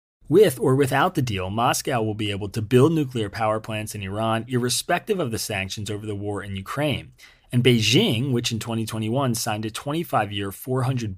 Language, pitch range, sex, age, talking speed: English, 105-130 Hz, male, 30-49, 185 wpm